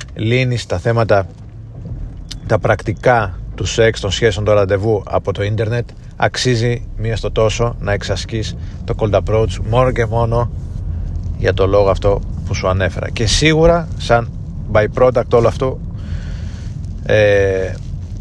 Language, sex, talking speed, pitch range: Greek, male, 135 wpm, 95-115 Hz